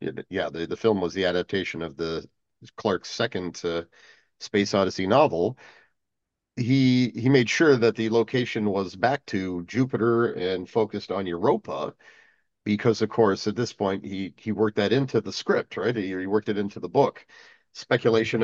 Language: English